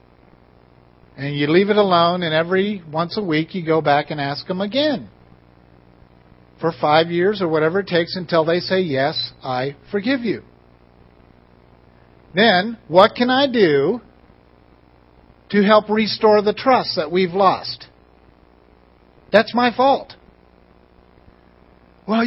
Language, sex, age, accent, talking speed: English, male, 50-69, American, 130 wpm